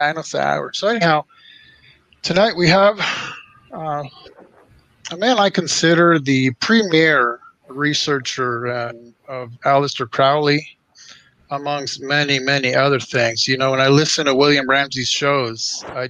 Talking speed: 125 wpm